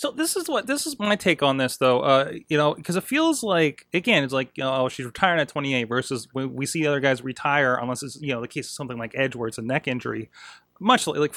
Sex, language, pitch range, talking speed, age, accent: male, English, 125-160 Hz, 275 wpm, 30-49, American